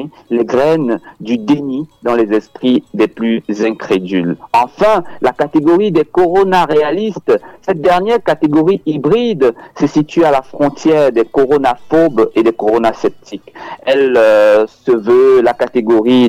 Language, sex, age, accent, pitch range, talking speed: French, male, 50-69, French, 115-180 Hz, 135 wpm